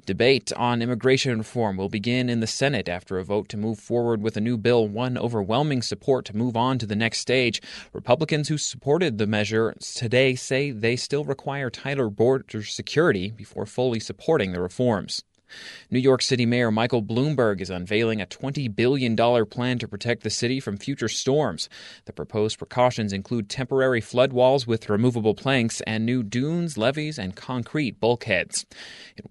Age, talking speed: 30-49, 170 wpm